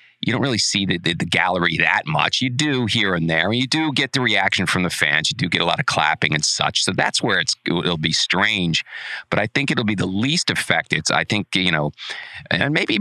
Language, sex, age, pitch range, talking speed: English, male, 40-59, 90-120 Hz, 245 wpm